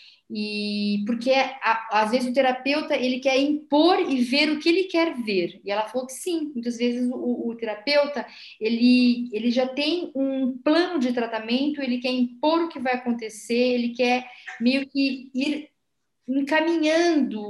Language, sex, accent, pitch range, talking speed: Portuguese, female, Brazilian, 235-295 Hz, 160 wpm